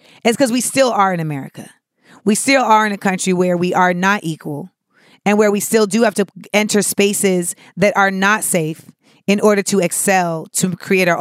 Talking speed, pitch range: 205 wpm, 180-220 Hz